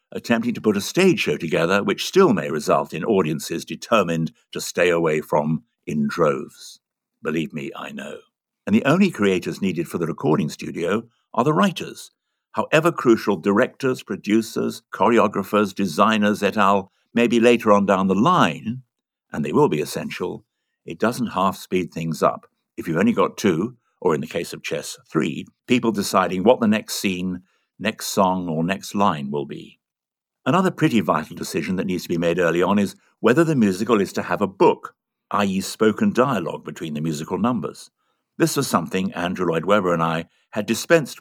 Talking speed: 180 wpm